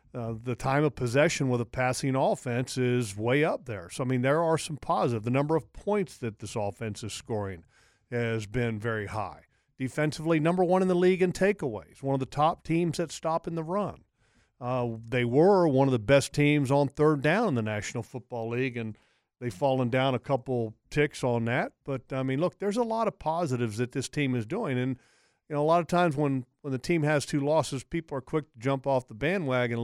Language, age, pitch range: English, 50-69, 125-165 Hz